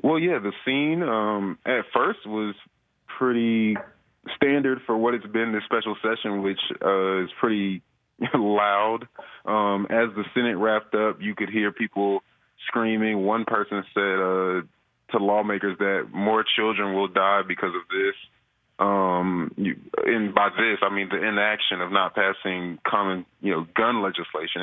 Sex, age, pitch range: male, 20-39, 95-110 Hz